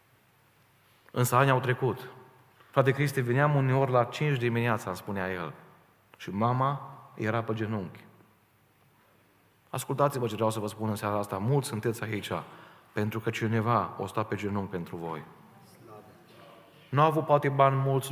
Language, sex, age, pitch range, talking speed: Romanian, male, 30-49, 110-130 Hz, 150 wpm